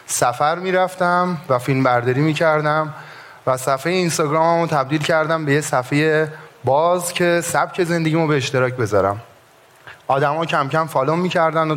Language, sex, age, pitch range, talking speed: Persian, male, 30-49, 130-165 Hz, 135 wpm